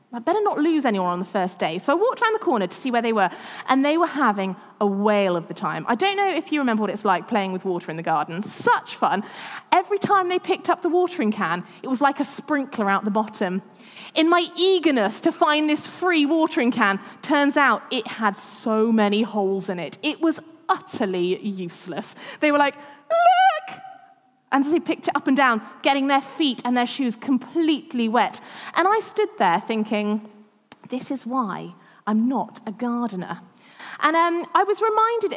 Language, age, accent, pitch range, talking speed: English, 20-39, British, 210-320 Hz, 205 wpm